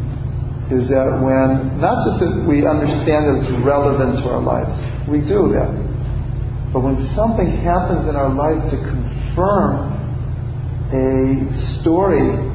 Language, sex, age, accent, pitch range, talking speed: English, male, 50-69, American, 120-130 Hz, 135 wpm